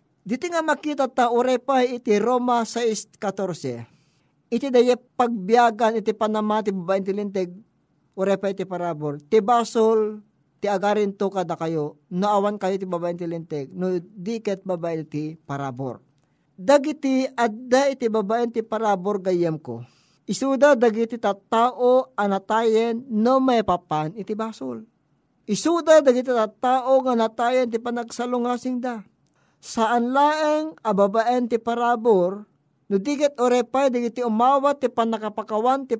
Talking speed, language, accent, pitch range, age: 125 wpm, Filipino, native, 195-250 Hz, 50-69